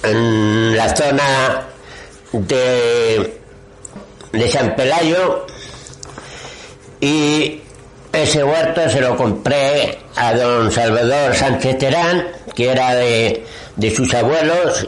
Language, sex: Spanish, male